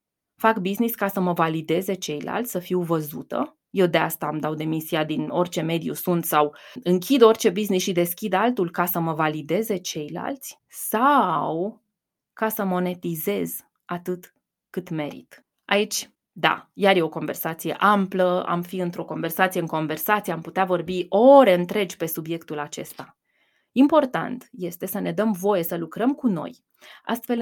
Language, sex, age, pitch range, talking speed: Romanian, female, 20-39, 170-220 Hz, 155 wpm